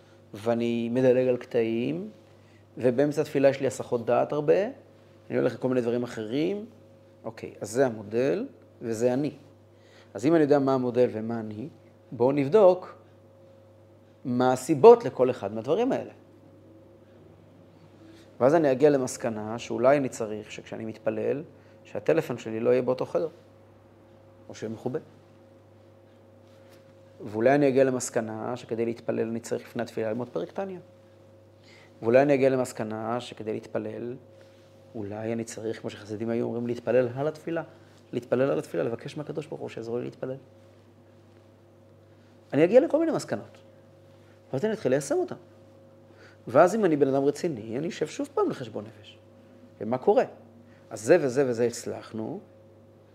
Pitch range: 110-125 Hz